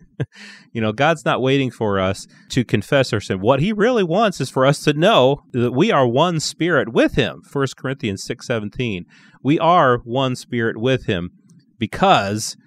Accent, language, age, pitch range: American, English, 30-49, 105-150 Hz